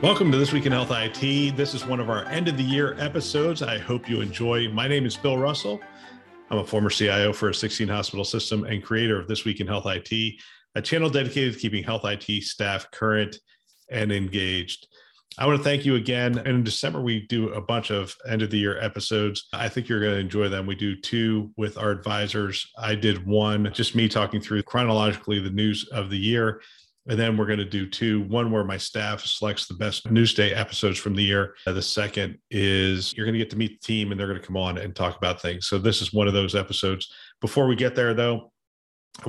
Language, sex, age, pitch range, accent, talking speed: English, male, 40-59, 100-115 Hz, American, 230 wpm